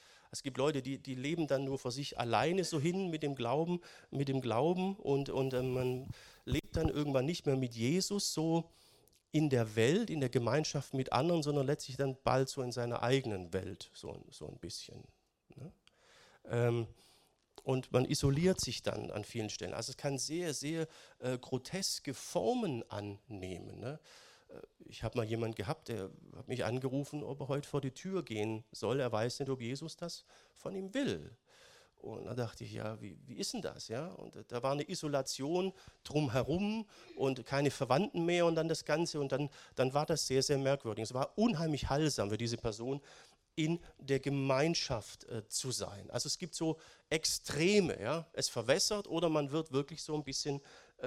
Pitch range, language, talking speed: 125-165 Hz, German, 185 wpm